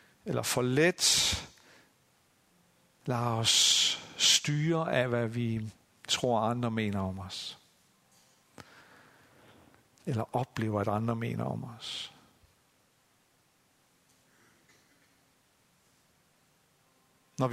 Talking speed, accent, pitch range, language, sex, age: 75 wpm, native, 115-135 Hz, Danish, male, 60-79